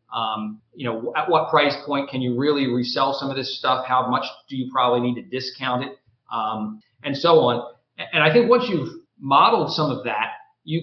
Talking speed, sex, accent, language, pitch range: 210 wpm, male, American, English, 125-160 Hz